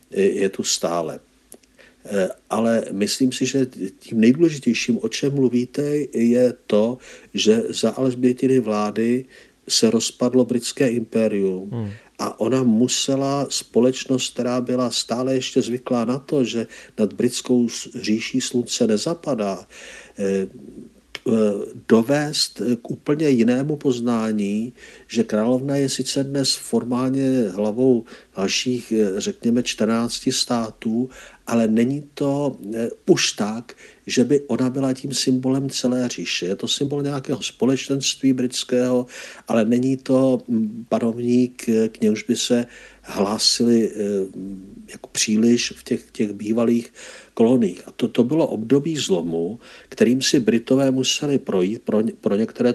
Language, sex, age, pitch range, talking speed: Czech, male, 50-69, 115-135 Hz, 120 wpm